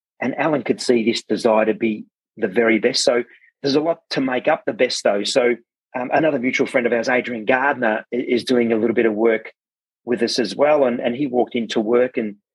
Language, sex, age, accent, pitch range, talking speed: English, male, 30-49, Australian, 110-125 Hz, 230 wpm